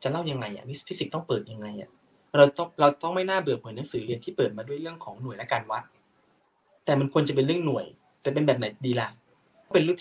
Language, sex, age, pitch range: Thai, male, 20-39, 120-160 Hz